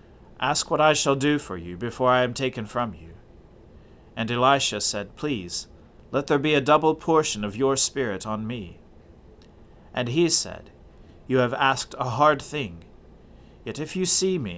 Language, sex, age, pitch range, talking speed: English, male, 40-59, 100-140 Hz, 175 wpm